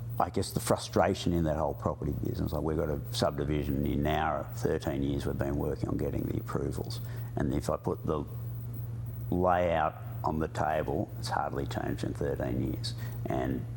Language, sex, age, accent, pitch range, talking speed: English, male, 60-79, Australian, 80-115 Hz, 180 wpm